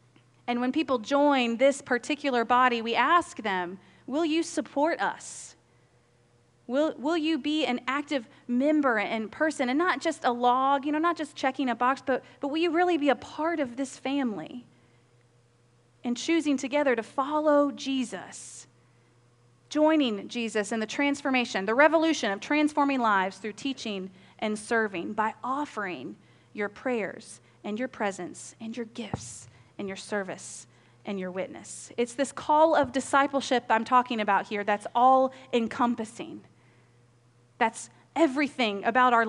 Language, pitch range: English, 190-275 Hz